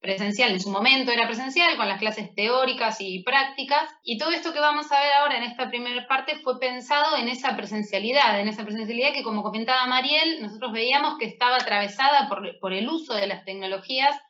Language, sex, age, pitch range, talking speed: Spanish, female, 20-39, 210-285 Hz, 200 wpm